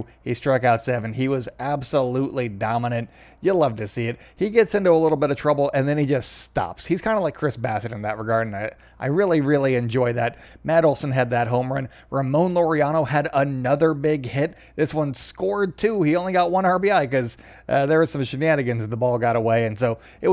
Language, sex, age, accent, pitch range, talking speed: English, male, 20-39, American, 130-185 Hz, 225 wpm